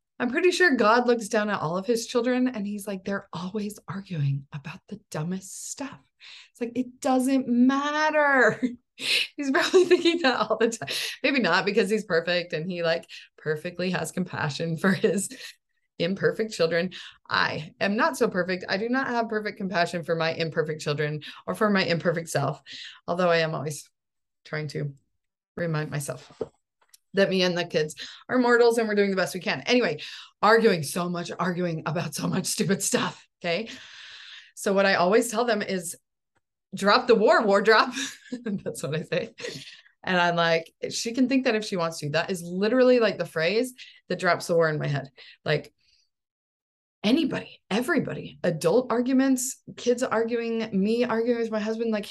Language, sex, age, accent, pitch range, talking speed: English, female, 20-39, American, 170-245 Hz, 175 wpm